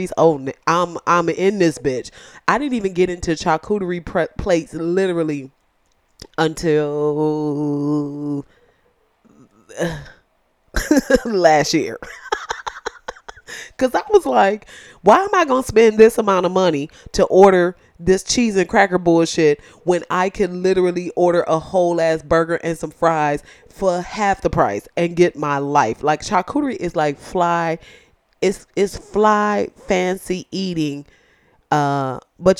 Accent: American